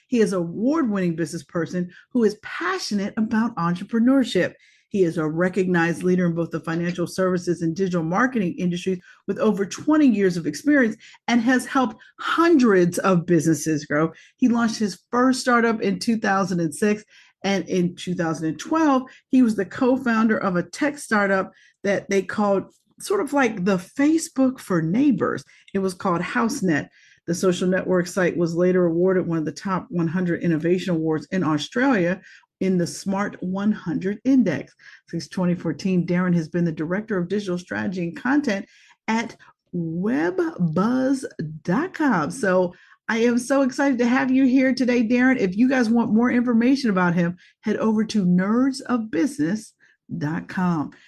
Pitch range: 175-250 Hz